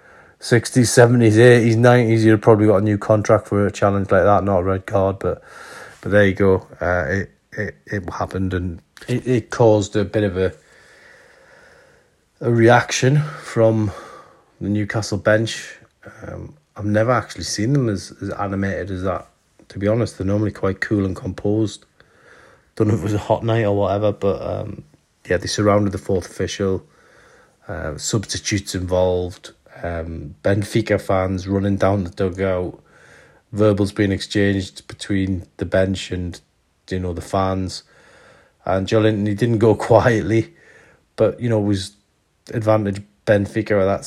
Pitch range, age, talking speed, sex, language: 95-110 Hz, 30-49, 160 wpm, male, English